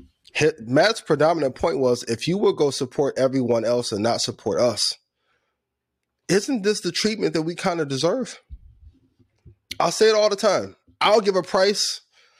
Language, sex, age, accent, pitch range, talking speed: English, male, 20-39, American, 115-180 Hz, 165 wpm